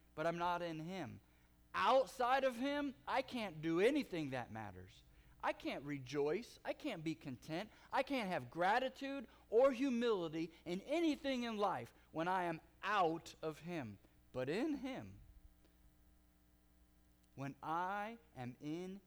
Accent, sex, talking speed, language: American, male, 140 wpm, English